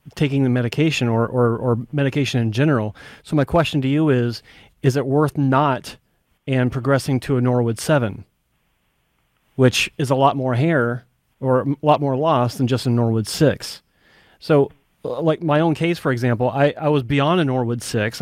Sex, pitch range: male, 125-145 Hz